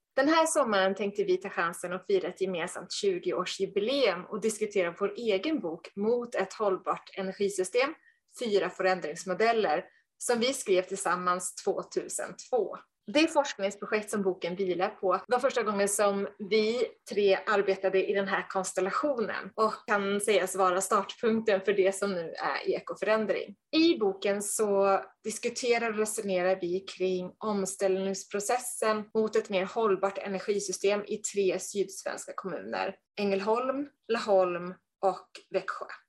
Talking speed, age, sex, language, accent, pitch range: 130 wpm, 20-39, female, Swedish, native, 190-230 Hz